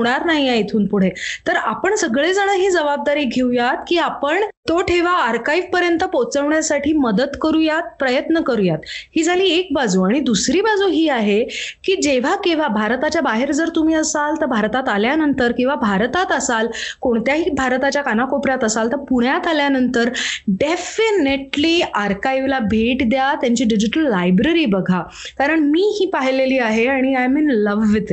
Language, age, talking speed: Marathi, 20-39, 135 wpm